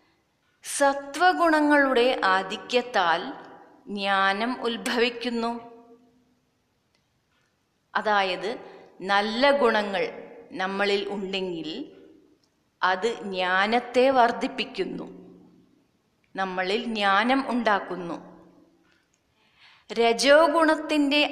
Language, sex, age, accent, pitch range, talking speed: Malayalam, female, 30-49, native, 200-255 Hz, 45 wpm